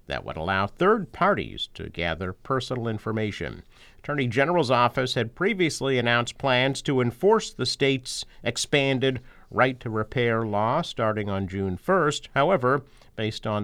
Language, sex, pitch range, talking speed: English, male, 100-135 Hz, 130 wpm